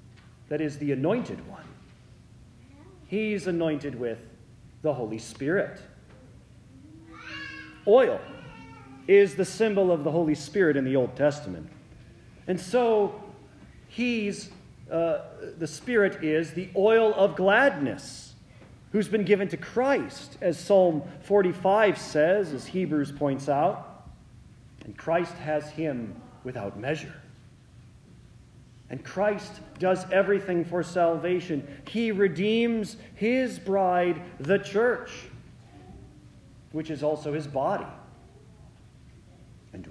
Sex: male